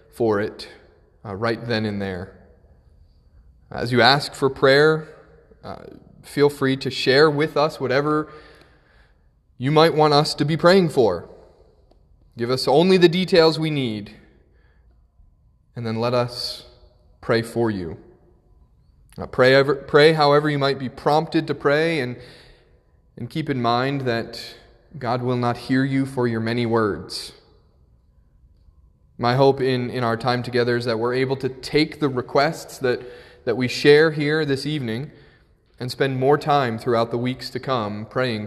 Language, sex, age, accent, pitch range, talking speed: English, male, 20-39, American, 110-145 Hz, 155 wpm